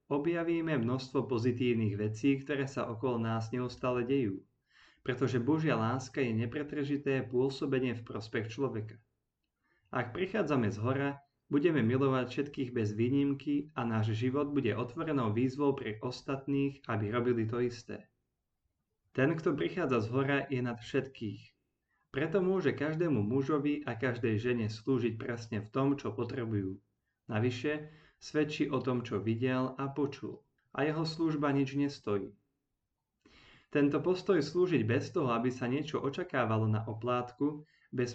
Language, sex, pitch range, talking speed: Slovak, male, 115-140 Hz, 135 wpm